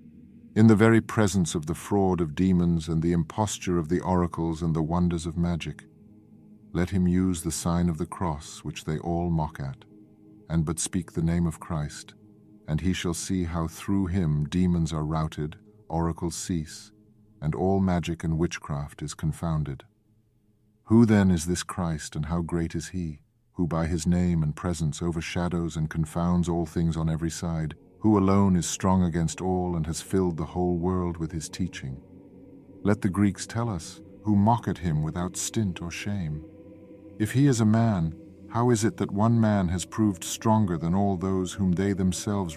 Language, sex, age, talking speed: English, male, 50-69, 185 wpm